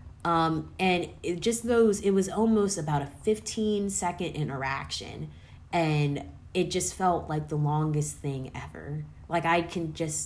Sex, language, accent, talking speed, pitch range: female, English, American, 150 wpm, 135-165 Hz